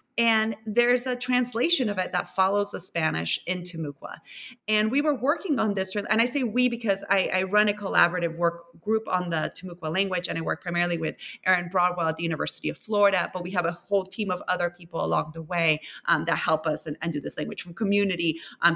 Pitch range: 180-235 Hz